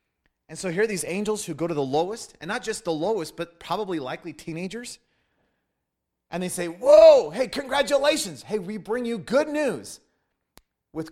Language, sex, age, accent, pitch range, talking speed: English, male, 30-49, American, 155-215 Hz, 180 wpm